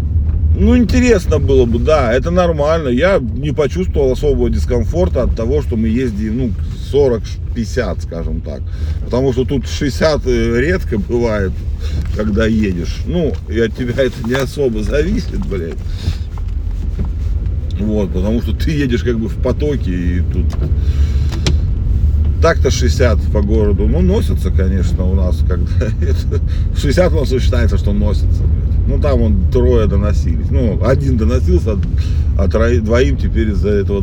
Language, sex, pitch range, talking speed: Russian, male, 80-95 Hz, 145 wpm